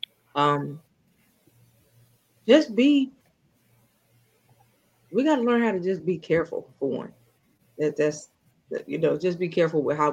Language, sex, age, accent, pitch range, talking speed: English, female, 20-39, American, 140-170 Hz, 135 wpm